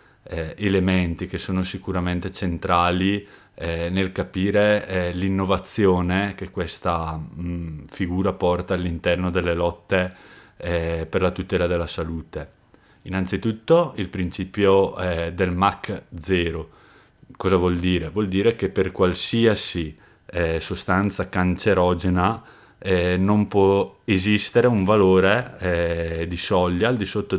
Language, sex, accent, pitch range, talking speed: Italian, male, native, 85-100 Hz, 115 wpm